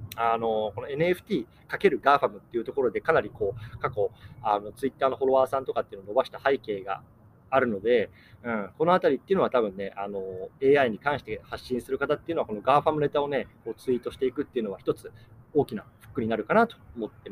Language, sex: Japanese, male